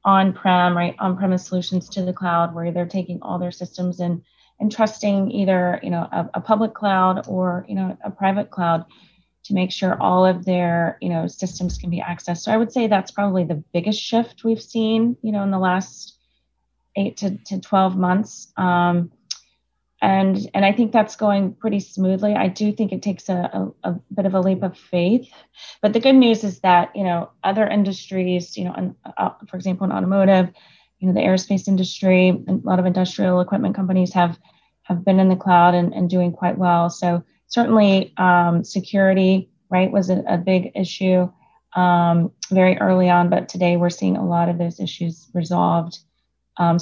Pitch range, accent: 175-195 Hz, American